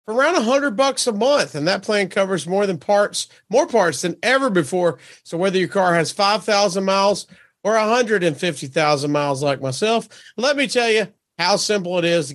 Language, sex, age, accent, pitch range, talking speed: English, male, 40-59, American, 160-205 Hz, 190 wpm